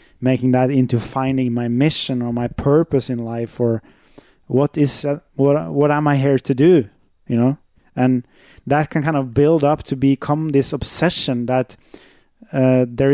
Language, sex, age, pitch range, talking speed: English, male, 20-39, 125-145 Hz, 175 wpm